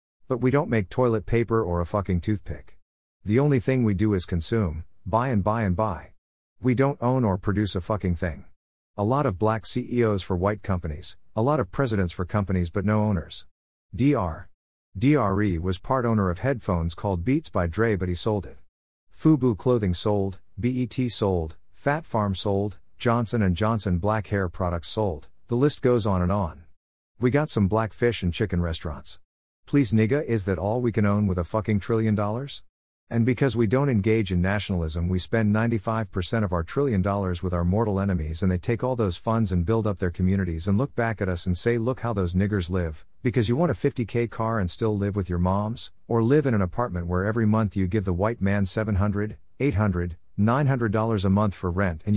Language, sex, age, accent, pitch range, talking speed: English, male, 50-69, American, 90-115 Hz, 205 wpm